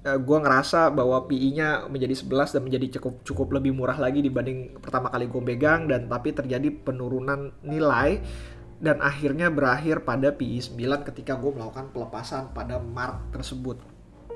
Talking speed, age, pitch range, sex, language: 140 wpm, 20-39, 125-155 Hz, male, Indonesian